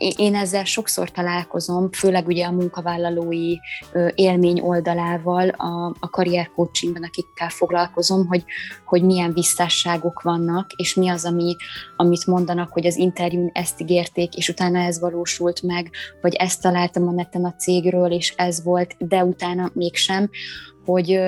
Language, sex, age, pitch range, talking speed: Hungarian, female, 20-39, 170-185 Hz, 140 wpm